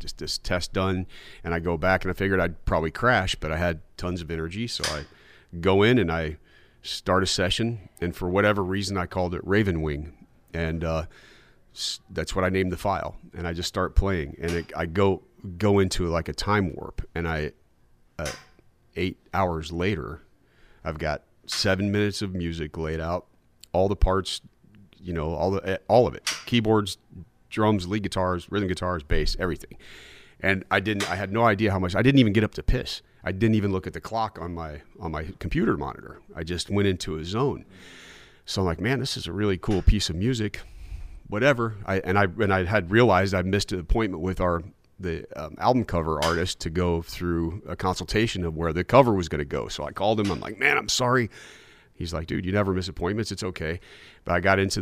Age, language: 40-59, English